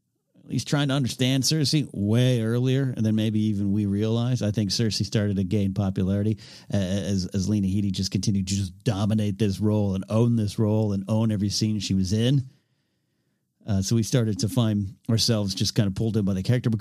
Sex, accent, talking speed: male, American, 205 wpm